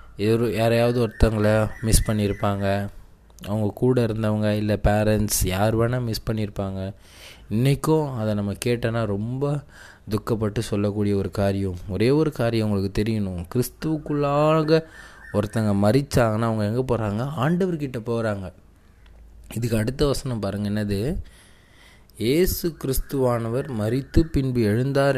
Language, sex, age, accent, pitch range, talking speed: Tamil, male, 20-39, native, 105-140 Hz, 100 wpm